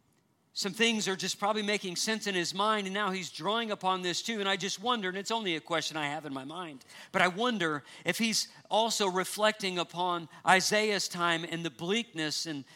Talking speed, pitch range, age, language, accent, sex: 210 wpm, 150-190 Hz, 50-69, English, American, male